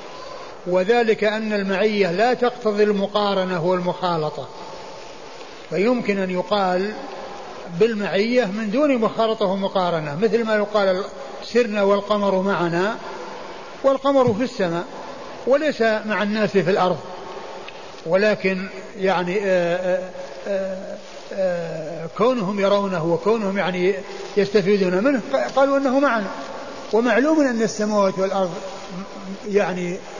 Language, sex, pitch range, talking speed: Arabic, male, 185-230 Hz, 90 wpm